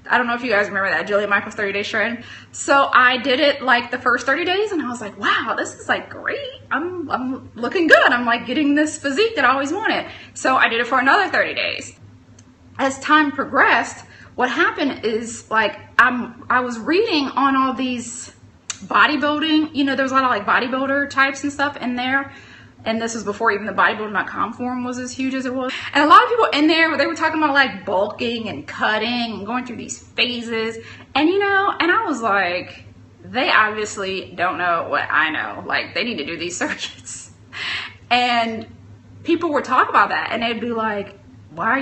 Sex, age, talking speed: female, 20-39, 210 wpm